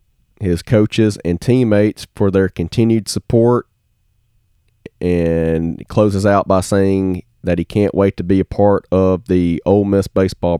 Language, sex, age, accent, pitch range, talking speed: English, male, 30-49, American, 95-120 Hz, 145 wpm